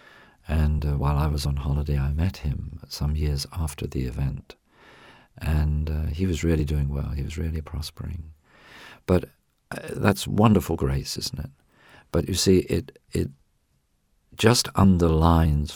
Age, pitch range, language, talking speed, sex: 50-69, 75-85 Hz, English, 150 wpm, male